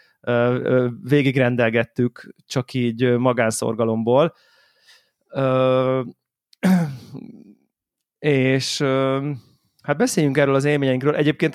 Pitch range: 120-150 Hz